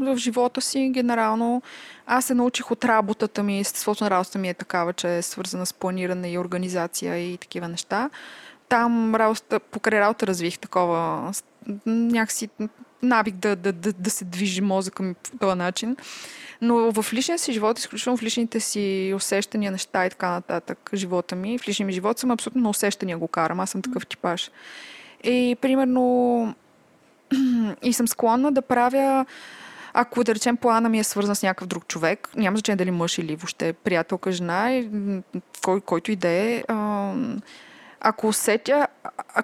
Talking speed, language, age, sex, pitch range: 165 wpm, Bulgarian, 20-39, female, 195-245 Hz